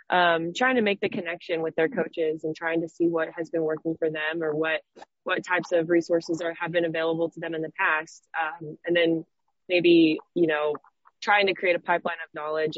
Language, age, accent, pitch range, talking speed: English, 20-39, American, 155-175 Hz, 220 wpm